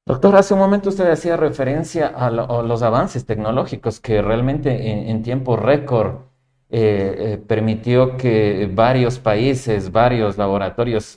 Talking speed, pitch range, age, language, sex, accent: 145 wpm, 110-130 Hz, 40-59, Spanish, male, Mexican